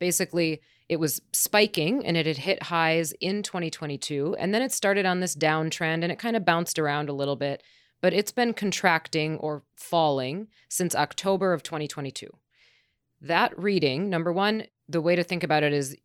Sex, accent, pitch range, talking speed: female, American, 140-175 Hz, 180 wpm